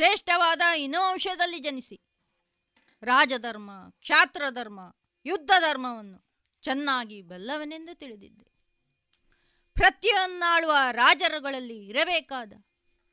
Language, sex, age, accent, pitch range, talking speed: Kannada, female, 20-39, native, 205-320 Hz, 60 wpm